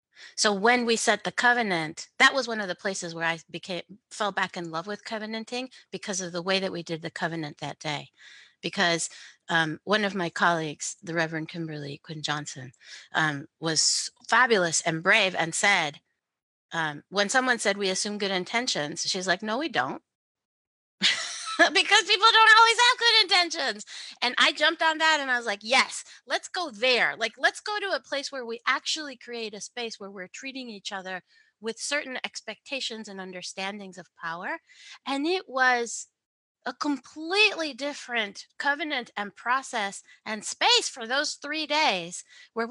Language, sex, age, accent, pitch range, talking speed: English, female, 30-49, American, 185-285 Hz, 175 wpm